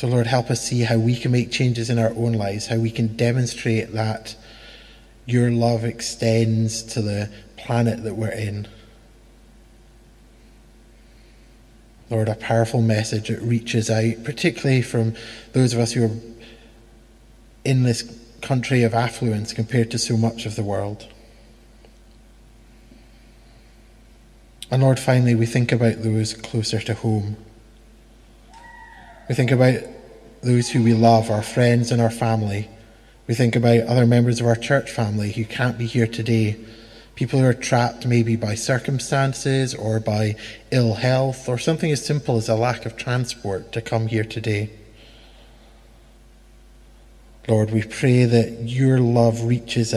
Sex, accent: male, British